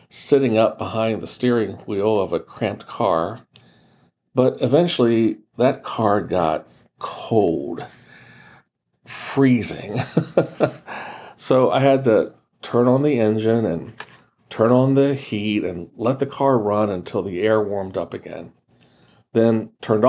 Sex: male